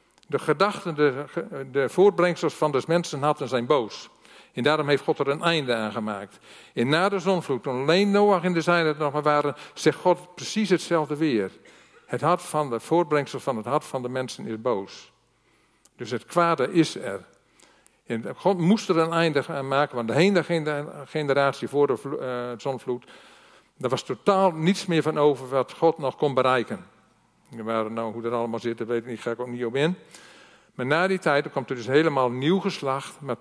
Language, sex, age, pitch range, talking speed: Dutch, male, 50-69, 125-170 Hz, 195 wpm